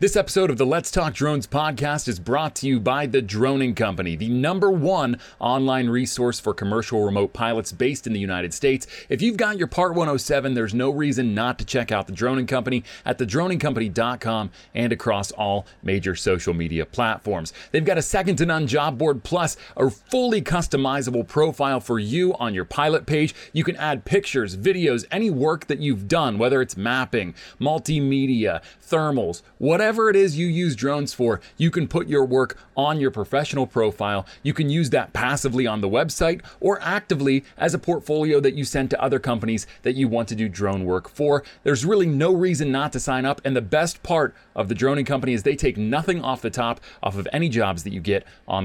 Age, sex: 30-49, male